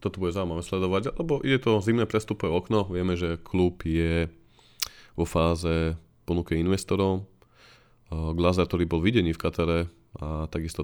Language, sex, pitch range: Slovak, male, 85-95 Hz